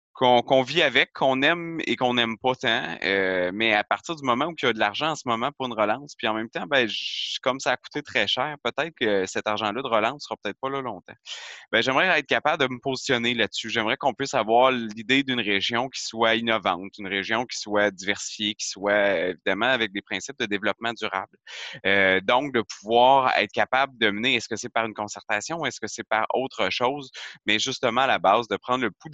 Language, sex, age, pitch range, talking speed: French, male, 20-39, 100-130 Hz, 235 wpm